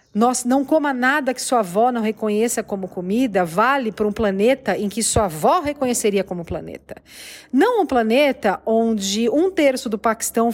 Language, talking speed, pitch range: Portuguese, 165 wpm, 215-295 Hz